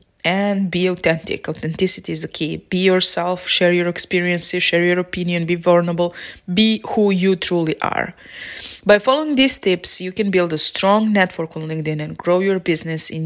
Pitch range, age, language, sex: 165-185 Hz, 20-39, English, female